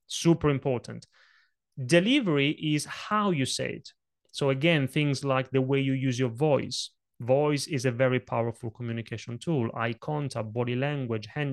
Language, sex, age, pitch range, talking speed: English, male, 30-49, 130-175 Hz, 155 wpm